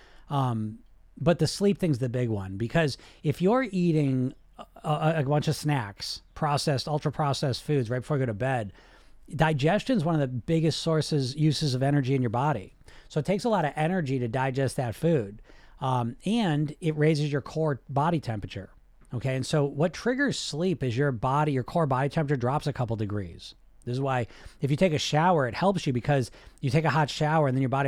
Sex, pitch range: male, 120-155 Hz